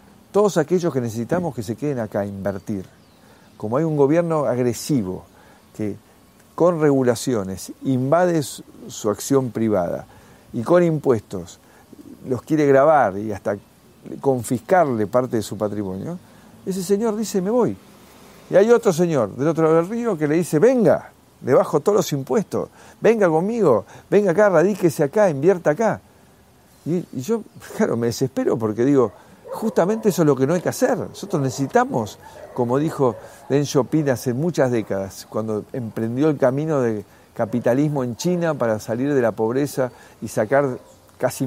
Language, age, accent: Spanish, 50-69, Argentinian